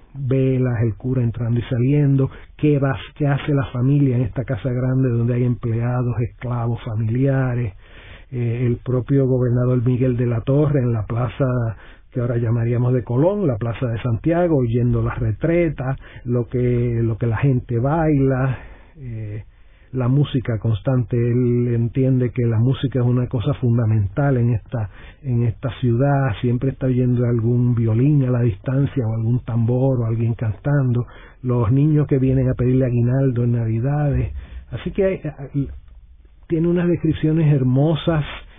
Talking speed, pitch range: 155 wpm, 115-135 Hz